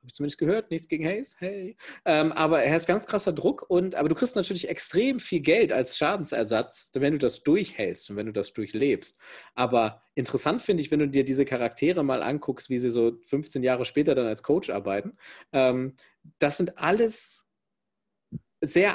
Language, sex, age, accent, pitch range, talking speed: German, male, 40-59, German, 125-170 Hz, 185 wpm